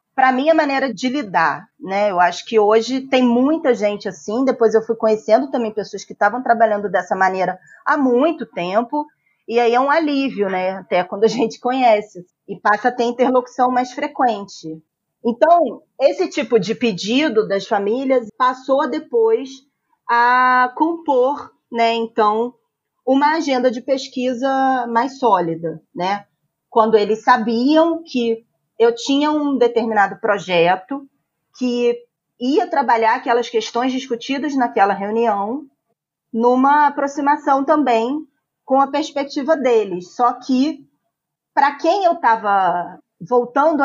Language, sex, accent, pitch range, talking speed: Portuguese, female, Brazilian, 210-270 Hz, 135 wpm